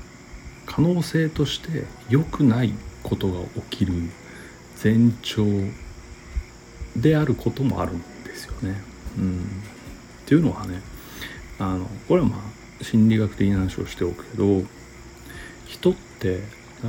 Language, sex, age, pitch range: Japanese, male, 60-79, 95-125 Hz